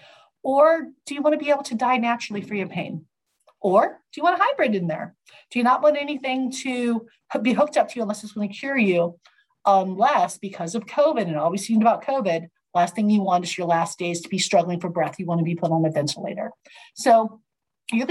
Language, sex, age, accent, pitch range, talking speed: English, female, 40-59, American, 190-265 Hz, 230 wpm